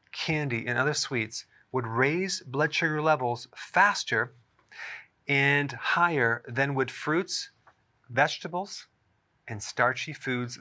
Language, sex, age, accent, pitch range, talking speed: English, male, 40-59, American, 120-150 Hz, 105 wpm